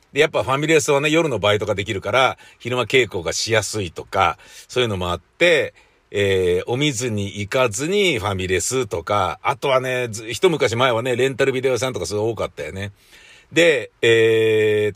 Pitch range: 105-170 Hz